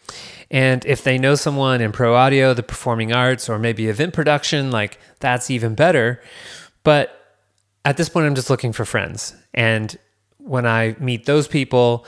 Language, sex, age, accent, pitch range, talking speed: English, male, 20-39, American, 115-140 Hz, 170 wpm